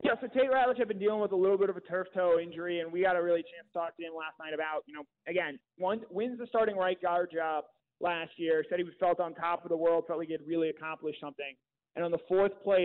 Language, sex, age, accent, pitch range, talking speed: English, male, 30-49, American, 160-185 Hz, 290 wpm